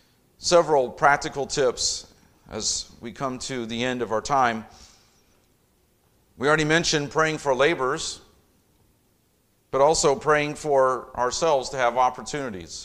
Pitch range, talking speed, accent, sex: 110-145 Hz, 120 wpm, American, male